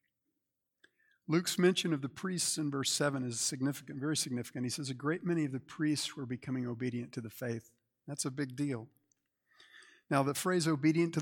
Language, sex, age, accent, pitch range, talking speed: English, male, 50-69, American, 120-150 Hz, 185 wpm